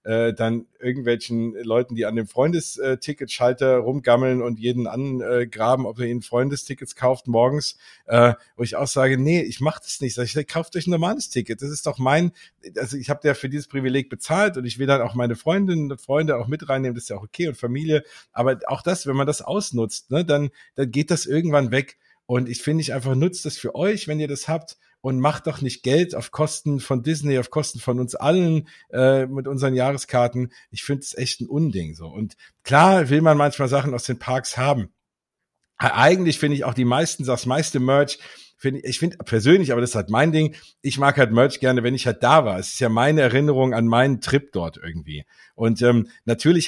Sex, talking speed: male, 215 wpm